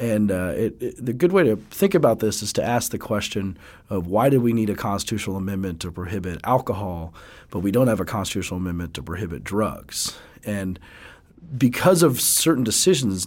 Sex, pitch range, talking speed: male, 90-115 Hz, 190 wpm